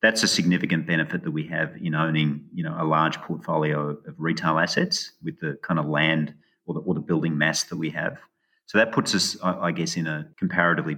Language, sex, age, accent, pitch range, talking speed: English, male, 30-49, Australian, 75-85 Hz, 215 wpm